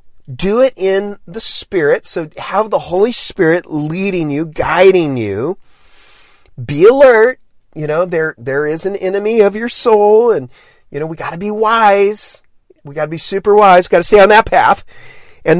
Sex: male